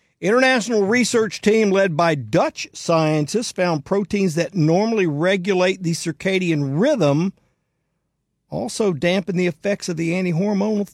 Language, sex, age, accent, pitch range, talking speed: English, male, 50-69, American, 160-205 Hz, 120 wpm